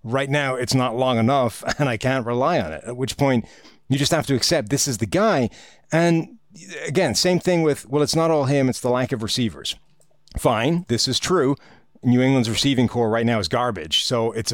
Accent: American